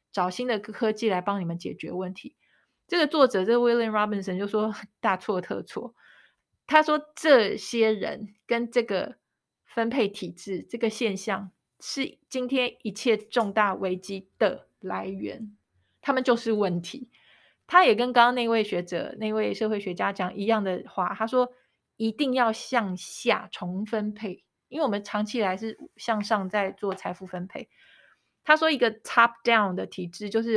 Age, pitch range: 30-49, 195-240 Hz